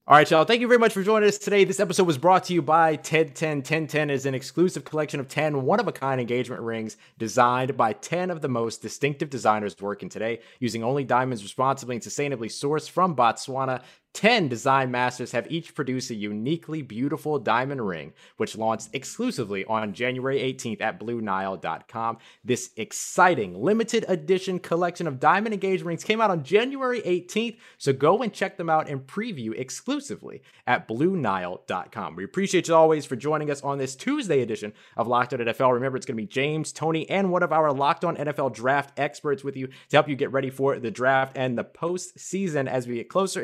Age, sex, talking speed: 20-39, male, 195 wpm